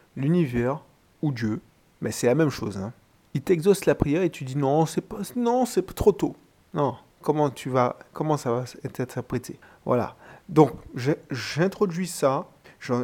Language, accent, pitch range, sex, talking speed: French, French, 115-140 Hz, male, 185 wpm